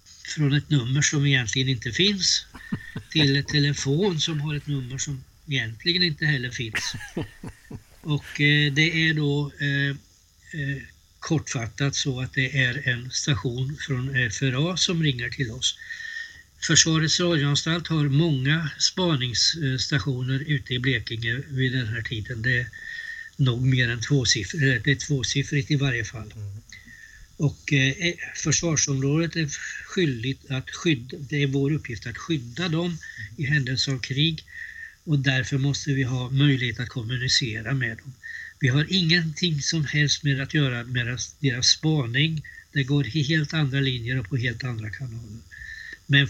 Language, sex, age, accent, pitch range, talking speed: Swedish, male, 60-79, native, 125-155 Hz, 145 wpm